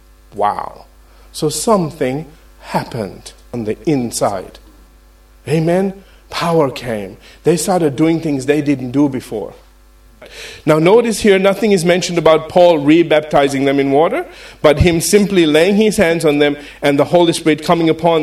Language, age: English, 50-69